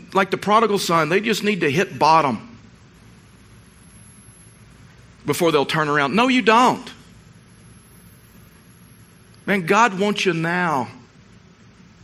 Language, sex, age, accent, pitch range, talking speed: English, male, 50-69, American, 140-190 Hz, 110 wpm